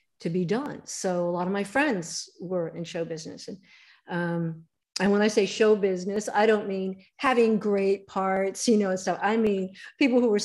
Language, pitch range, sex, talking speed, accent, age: English, 180-220 Hz, female, 200 wpm, American, 50-69